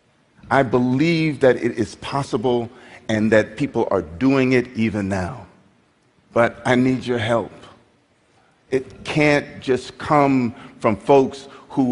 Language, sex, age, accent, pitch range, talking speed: English, male, 50-69, American, 110-140 Hz, 130 wpm